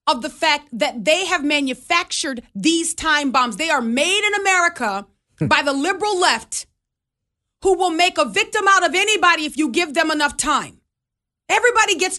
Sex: female